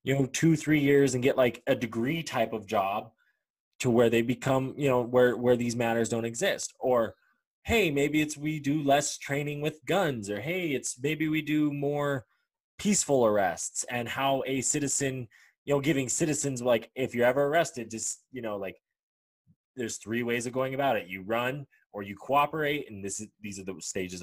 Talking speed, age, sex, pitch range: 200 wpm, 20-39, male, 110-140 Hz